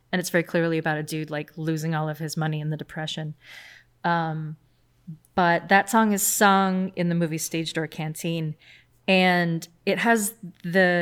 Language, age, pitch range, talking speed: English, 20-39, 160-185 Hz, 175 wpm